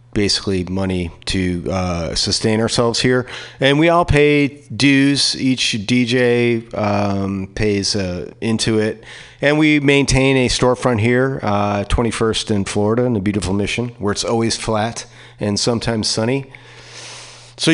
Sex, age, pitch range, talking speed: male, 40-59, 110-135 Hz, 140 wpm